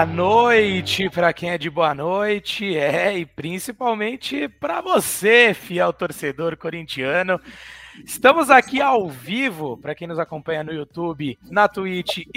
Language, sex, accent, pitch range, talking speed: Portuguese, male, Brazilian, 170-235 Hz, 135 wpm